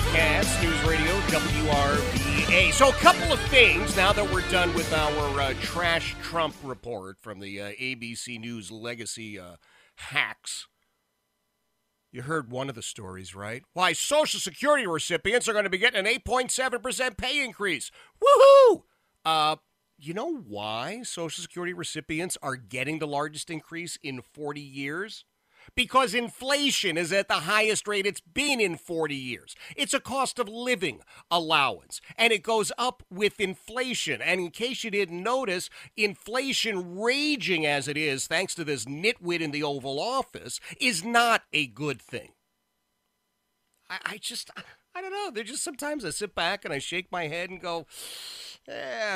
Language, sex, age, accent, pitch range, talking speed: English, male, 40-59, American, 145-235 Hz, 160 wpm